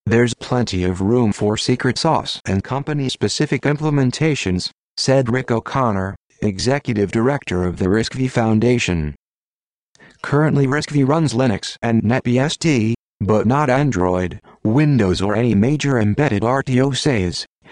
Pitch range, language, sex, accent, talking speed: 95-125 Hz, English, male, American, 120 wpm